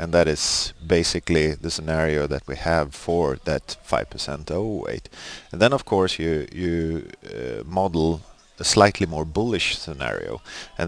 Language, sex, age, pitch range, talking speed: Finnish, male, 40-59, 75-90 Hz, 160 wpm